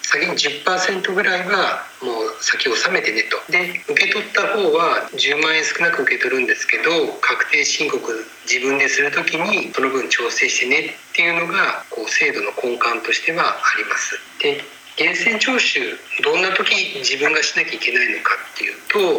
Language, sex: Japanese, male